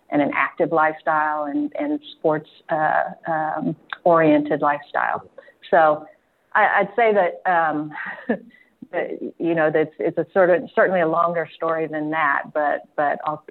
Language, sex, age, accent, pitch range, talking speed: English, female, 50-69, American, 150-180 Hz, 160 wpm